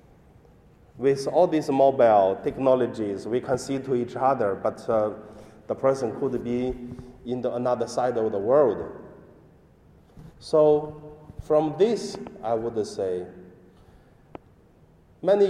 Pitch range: 120-150 Hz